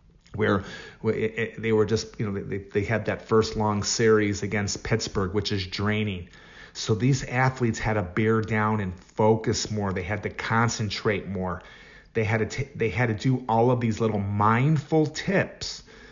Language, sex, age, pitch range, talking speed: English, male, 30-49, 100-120 Hz, 175 wpm